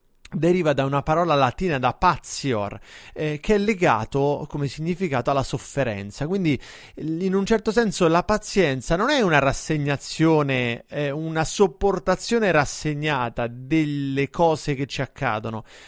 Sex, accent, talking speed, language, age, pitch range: male, native, 130 wpm, Italian, 30-49, 150-205 Hz